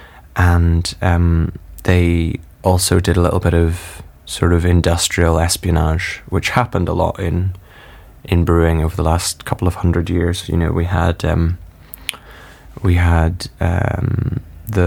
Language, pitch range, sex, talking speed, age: English, 85-95 Hz, male, 145 wpm, 20-39